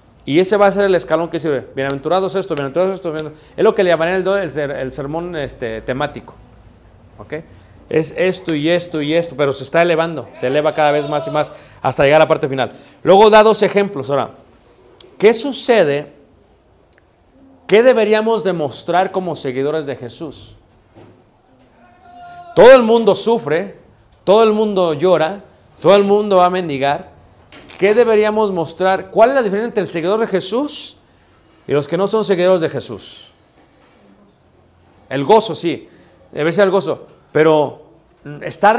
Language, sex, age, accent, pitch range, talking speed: Spanish, male, 40-59, Mexican, 140-200 Hz, 165 wpm